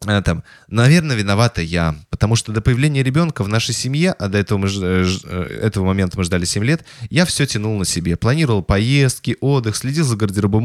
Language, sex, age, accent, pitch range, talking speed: Russian, male, 20-39, native, 95-130 Hz, 175 wpm